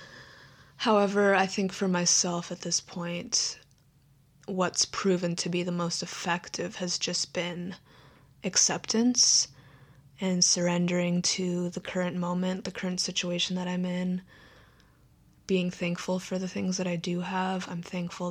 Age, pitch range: 20-39, 170-185 Hz